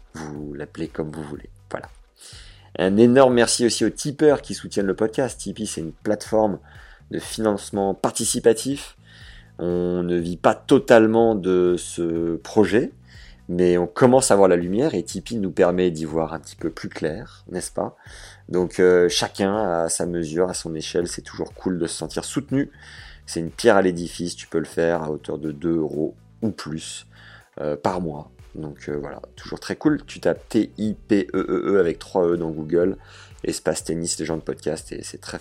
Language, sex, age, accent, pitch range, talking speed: French, male, 30-49, French, 80-110 Hz, 185 wpm